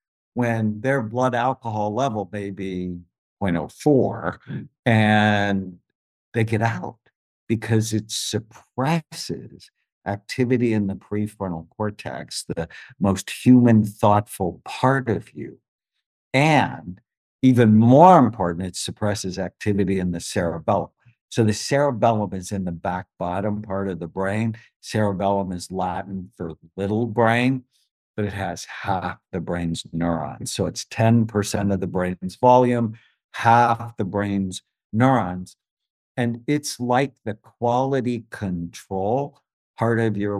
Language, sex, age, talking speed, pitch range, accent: English, male, 60-79, 120 wpm, 95-120 Hz, American